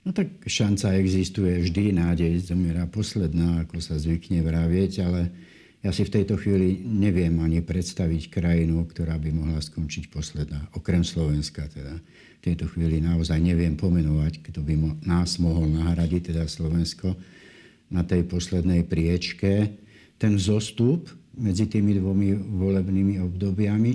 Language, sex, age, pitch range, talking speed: Slovak, male, 60-79, 80-95 Hz, 140 wpm